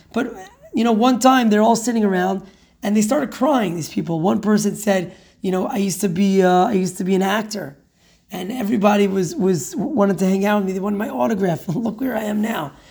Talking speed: 230 wpm